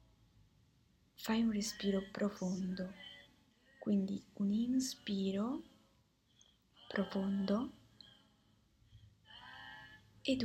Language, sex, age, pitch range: Italian, female, 20-39, 185-215 Hz